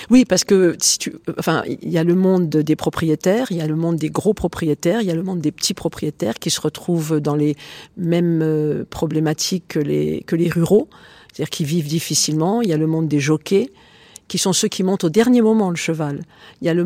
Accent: French